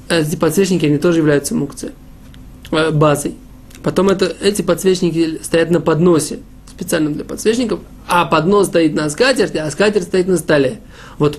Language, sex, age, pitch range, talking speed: Russian, male, 20-39, 145-180 Hz, 150 wpm